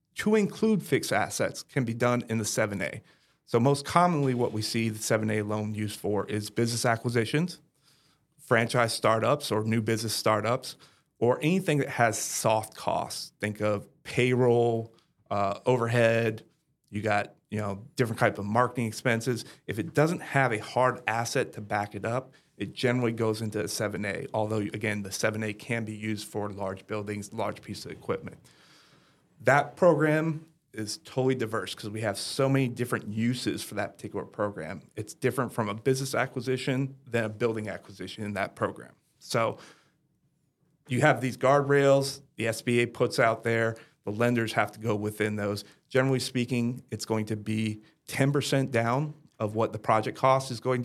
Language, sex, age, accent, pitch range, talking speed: English, male, 30-49, American, 110-135 Hz, 165 wpm